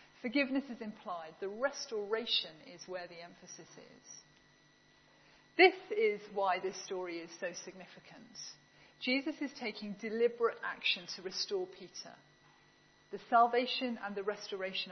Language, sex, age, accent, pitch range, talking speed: English, female, 40-59, British, 185-240 Hz, 125 wpm